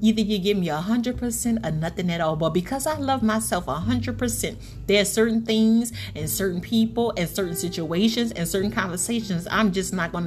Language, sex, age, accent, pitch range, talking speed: English, female, 30-49, American, 160-215 Hz, 180 wpm